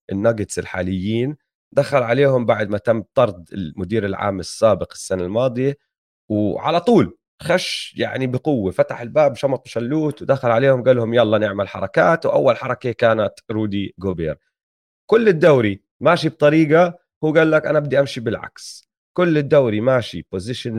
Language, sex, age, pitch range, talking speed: Arabic, male, 30-49, 105-145 Hz, 140 wpm